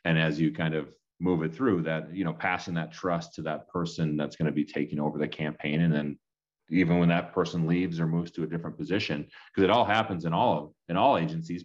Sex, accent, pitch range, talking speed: male, American, 80-100 Hz, 235 wpm